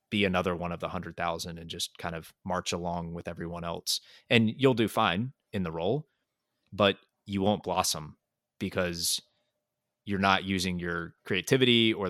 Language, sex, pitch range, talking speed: English, male, 90-100 Hz, 165 wpm